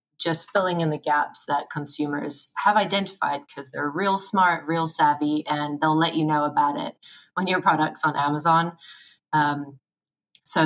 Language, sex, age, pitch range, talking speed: English, female, 20-39, 150-165 Hz, 165 wpm